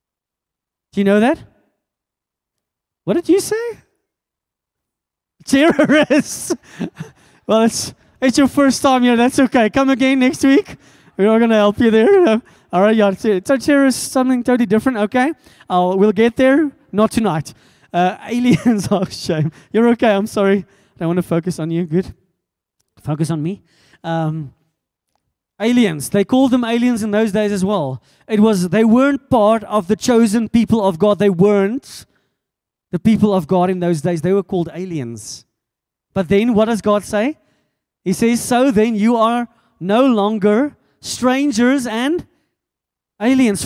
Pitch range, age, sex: 180-245 Hz, 20-39, male